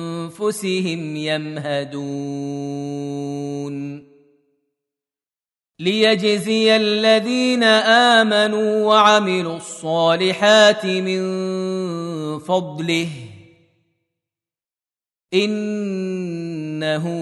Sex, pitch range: male, 145-205 Hz